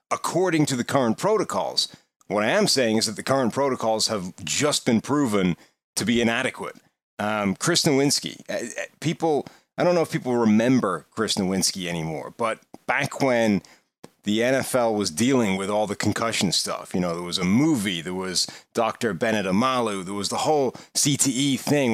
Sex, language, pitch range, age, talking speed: male, English, 100-135 Hz, 30-49, 170 wpm